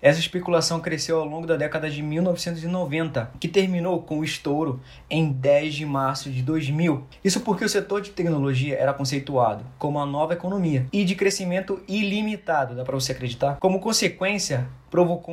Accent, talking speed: Brazilian, 170 wpm